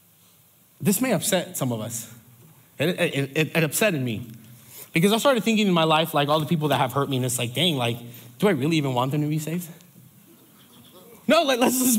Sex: male